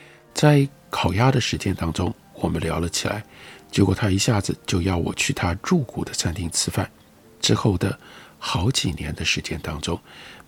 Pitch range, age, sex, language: 85-125 Hz, 50-69, male, Chinese